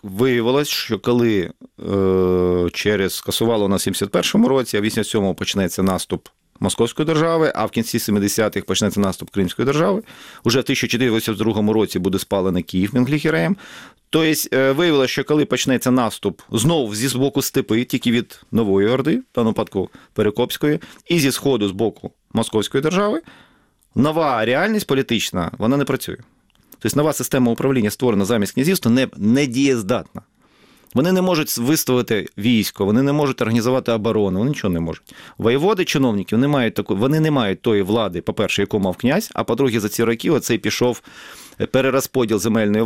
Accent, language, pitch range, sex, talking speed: native, Ukrainian, 105-135 Hz, male, 155 wpm